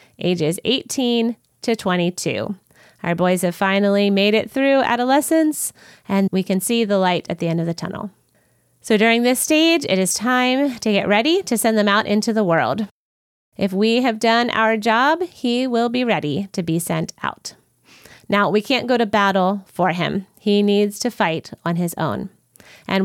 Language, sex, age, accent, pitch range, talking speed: English, female, 30-49, American, 180-240 Hz, 185 wpm